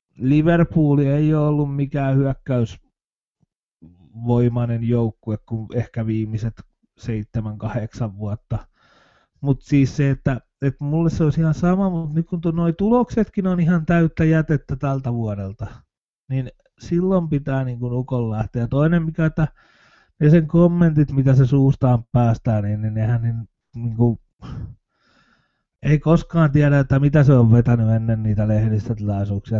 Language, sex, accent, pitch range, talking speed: Finnish, male, native, 115-160 Hz, 135 wpm